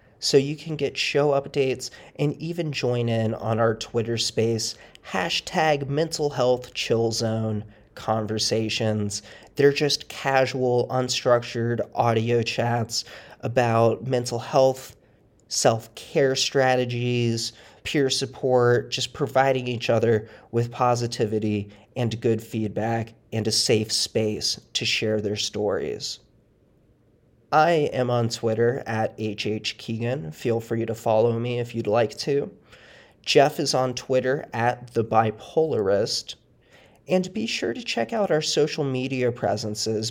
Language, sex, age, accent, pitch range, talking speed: English, male, 30-49, American, 110-135 Hz, 120 wpm